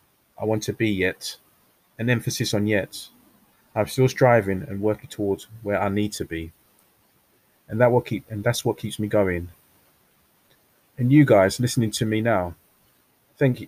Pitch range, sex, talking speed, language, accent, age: 100-120 Hz, male, 165 wpm, English, British, 20-39